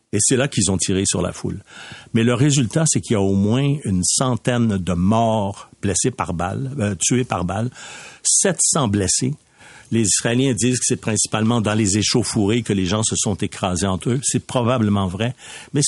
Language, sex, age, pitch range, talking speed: French, male, 60-79, 105-130 Hz, 195 wpm